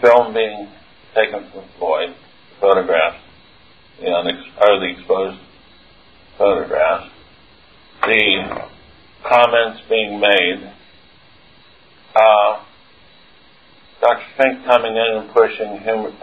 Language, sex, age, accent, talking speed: English, male, 50-69, American, 80 wpm